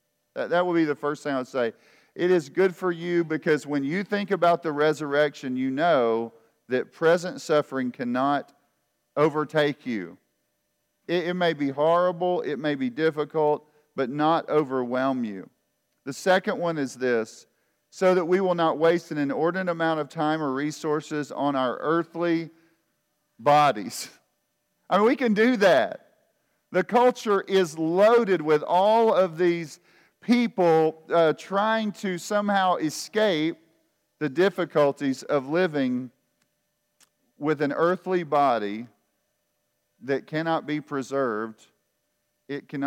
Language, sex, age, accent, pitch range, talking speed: English, male, 40-59, American, 135-175 Hz, 135 wpm